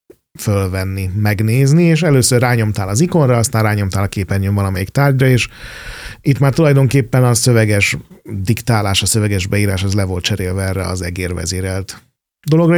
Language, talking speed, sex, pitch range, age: Hungarian, 145 wpm, male, 105-130 Hz, 30-49